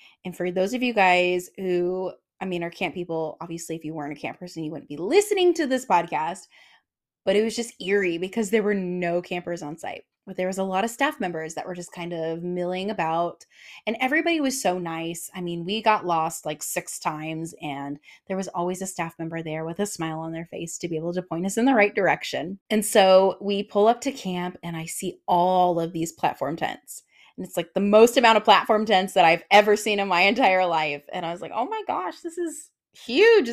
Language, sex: English, female